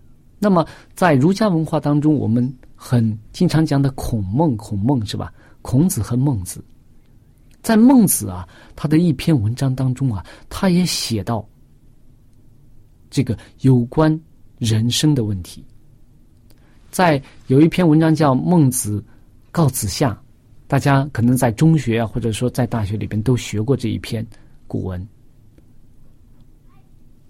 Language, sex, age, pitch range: Chinese, male, 50-69, 115-155 Hz